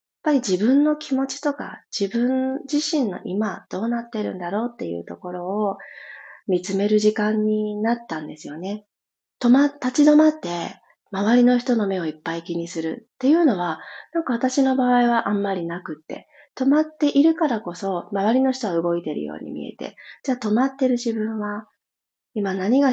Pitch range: 180-260 Hz